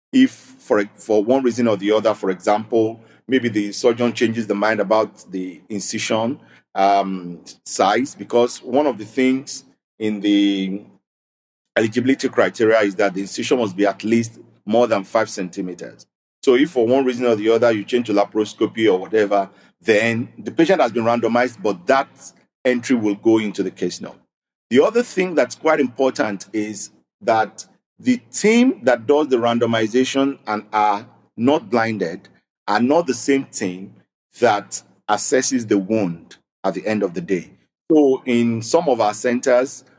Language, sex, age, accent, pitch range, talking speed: English, male, 50-69, Nigerian, 100-130 Hz, 165 wpm